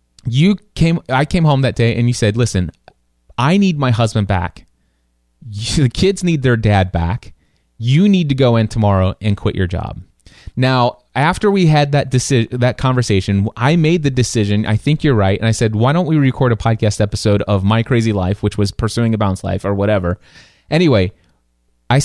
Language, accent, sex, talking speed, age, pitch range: English, American, male, 200 wpm, 30-49, 100-135 Hz